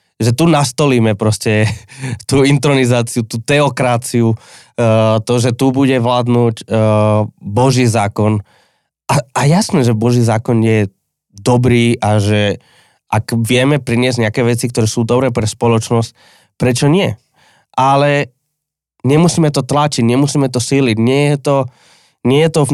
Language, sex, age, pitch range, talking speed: Slovak, male, 20-39, 105-130 Hz, 130 wpm